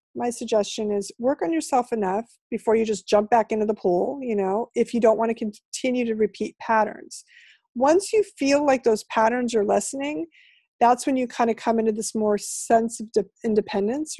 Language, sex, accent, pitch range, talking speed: English, female, American, 210-255 Hz, 195 wpm